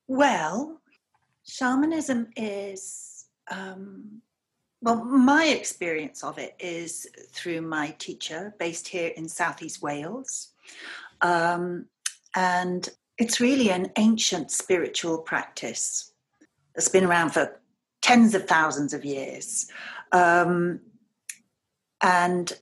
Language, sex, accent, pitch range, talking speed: English, female, British, 170-225 Hz, 100 wpm